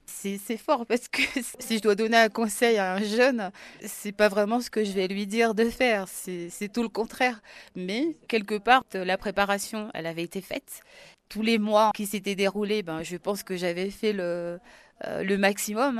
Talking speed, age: 205 wpm, 20-39